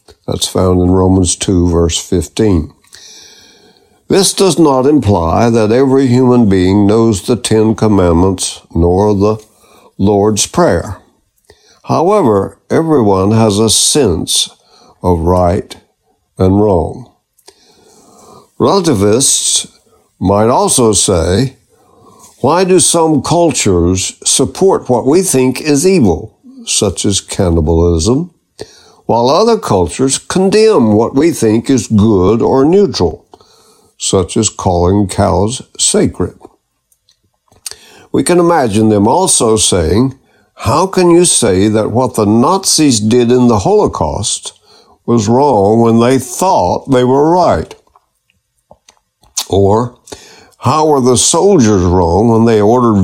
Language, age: English, 60-79